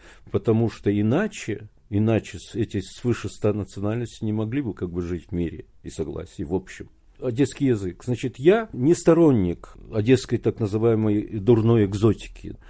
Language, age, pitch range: Russian, 50-69, 100-130 Hz